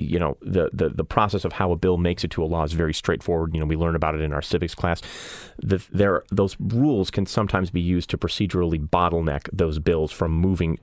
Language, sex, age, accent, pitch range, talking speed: English, male, 30-49, American, 80-100 Hz, 240 wpm